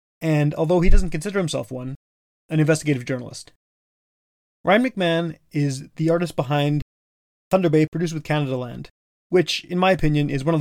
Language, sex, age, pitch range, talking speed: English, male, 20-39, 135-165 Hz, 165 wpm